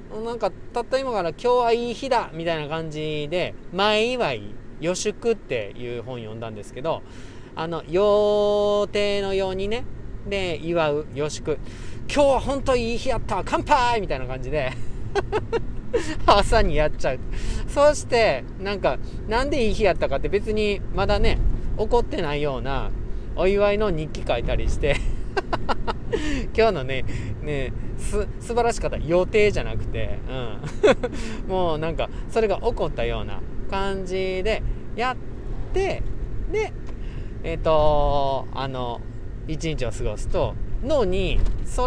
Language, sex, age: Japanese, male, 40-59